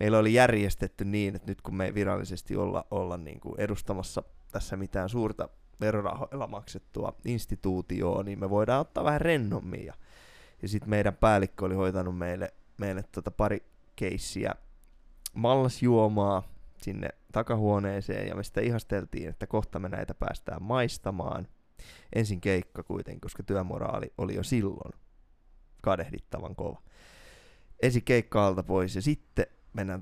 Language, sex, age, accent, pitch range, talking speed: Finnish, male, 20-39, native, 95-110 Hz, 130 wpm